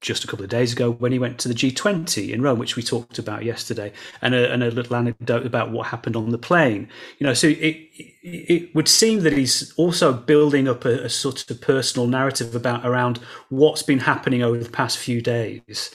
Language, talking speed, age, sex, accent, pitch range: English, 220 wpm, 30-49, male, British, 115-140 Hz